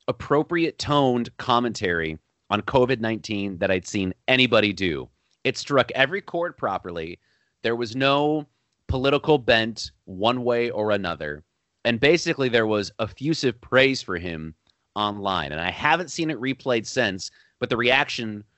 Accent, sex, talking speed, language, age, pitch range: American, male, 135 wpm, English, 30-49, 100-130 Hz